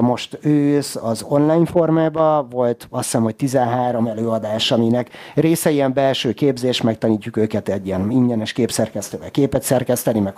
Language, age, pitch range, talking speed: Hungarian, 30-49, 110-145 Hz, 145 wpm